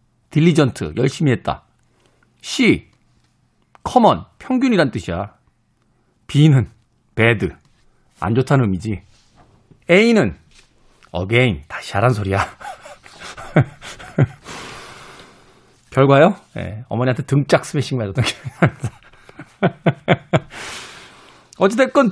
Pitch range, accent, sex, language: 120-185 Hz, native, male, Korean